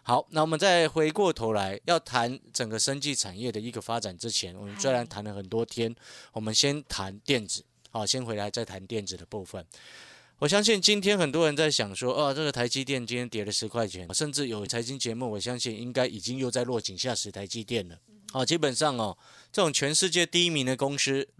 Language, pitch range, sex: Chinese, 110-140 Hz, male